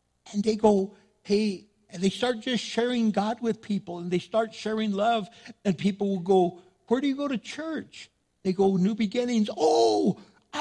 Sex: male